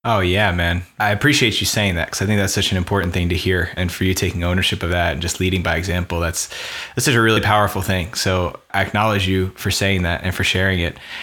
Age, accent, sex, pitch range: 20-39, American, male, 95-110 Hz